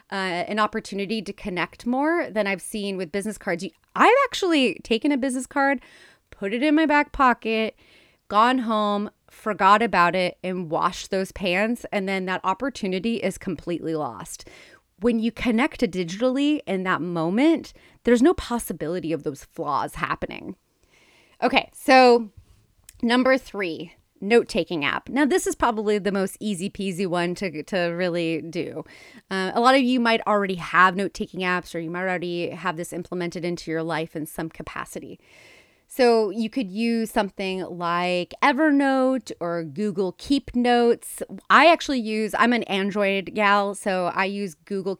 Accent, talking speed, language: American, 160 wpm, English